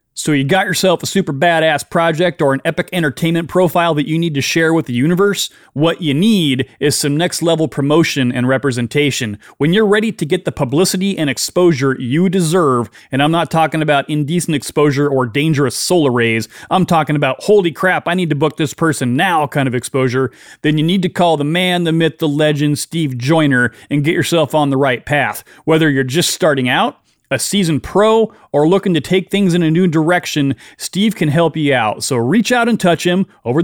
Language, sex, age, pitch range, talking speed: English, male, 30-49, 140-180 Hz, 210 wpm